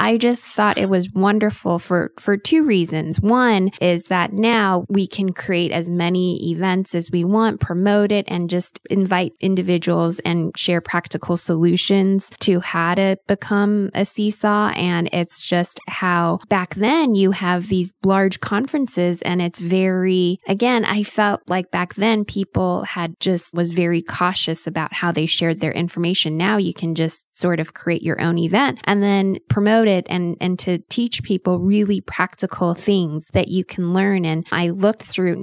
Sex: female